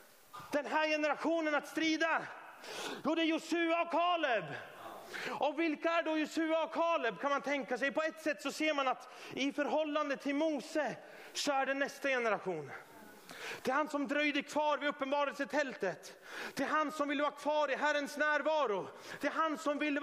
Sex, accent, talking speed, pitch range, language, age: male, native, 185 wpm, 250-315 Hz, Swedish, 30-49